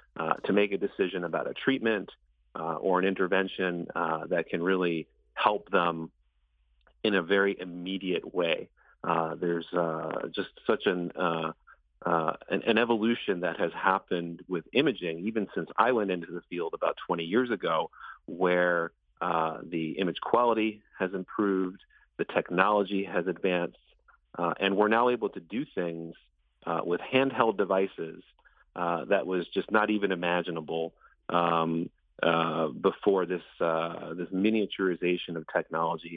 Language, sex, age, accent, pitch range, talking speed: English, male, 40-59, American, 85-100 Hz, 150 wpm